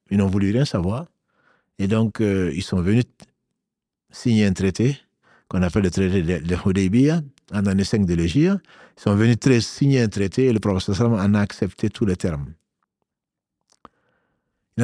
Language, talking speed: French, 180 wpm